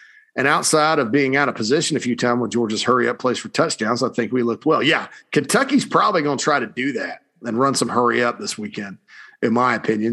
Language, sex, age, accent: English, male, 40-59, American